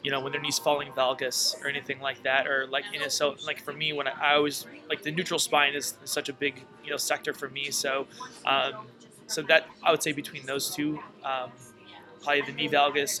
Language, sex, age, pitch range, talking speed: English, male, 20-39, 135-150 Hz, 235 wpm